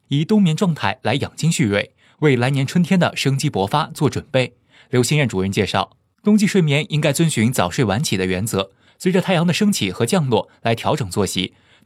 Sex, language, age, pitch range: male, Chinese, 20-39, 115-180 Hz